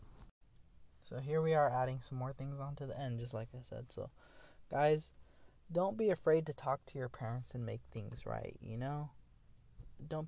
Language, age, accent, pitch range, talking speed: English, 20-39, American, 120-145 Hz, 185 wpm